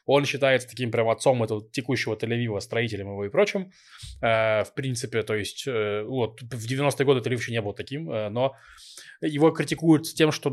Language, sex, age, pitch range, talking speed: Russian, male, 20-39, 115-140 Hz, 175 wpm